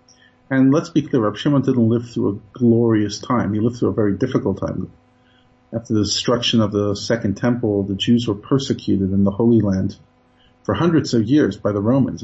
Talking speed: 195 wpm